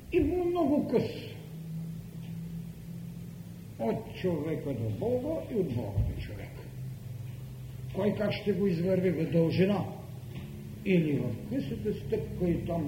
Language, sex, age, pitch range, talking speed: Bulgarian, male, 60-79, 120-165 Hz, 115 wpm